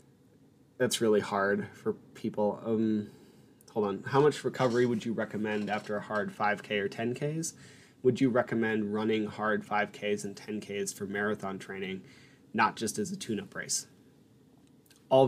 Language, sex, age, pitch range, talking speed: English, male, 20-39, 105-130 Hz, 150 wpm